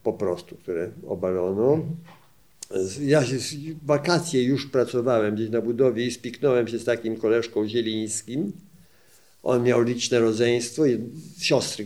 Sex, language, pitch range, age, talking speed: male, Polish, 110-145 Hz, 50-69, 120 wpm